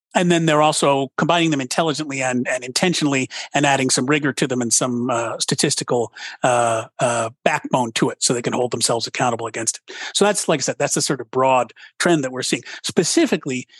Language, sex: English, male